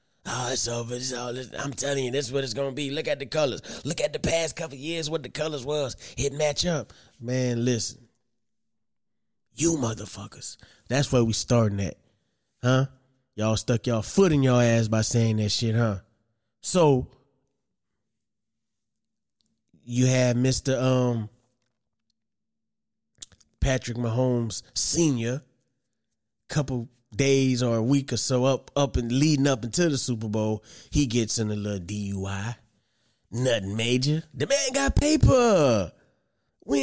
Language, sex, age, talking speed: English, male, 20-39, 150 wpm